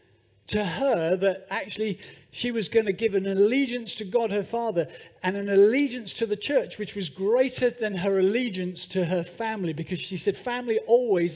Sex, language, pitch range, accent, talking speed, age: male, English, 135-205 Hz, British, 185 wpm, 40-59